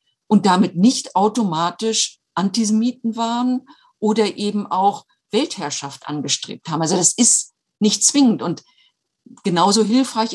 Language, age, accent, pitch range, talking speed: German, 50-69, German, 165-210 Hz, 115 wpm